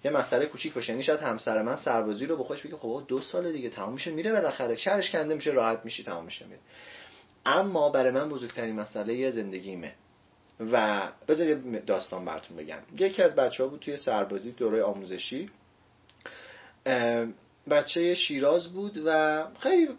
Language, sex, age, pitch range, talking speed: Persian, male, 30-49, 115-155 Hz, 165 wpm